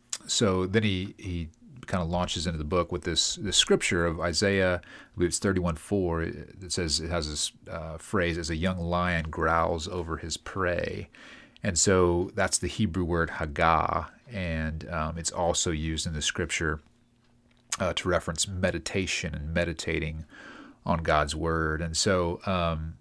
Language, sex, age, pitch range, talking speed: English, male, 40-59, 80-95 Hz, 155 wpm